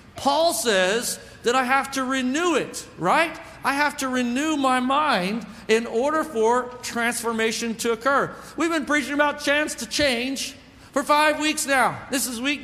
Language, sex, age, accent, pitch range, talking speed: English, male, 50-69, American, 220-280 Hz, 165 wpm